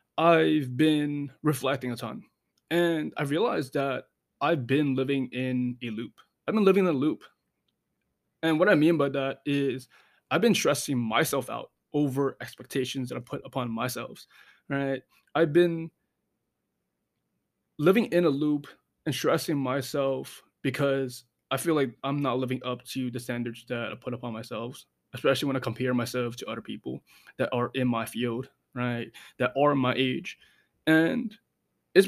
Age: 20-39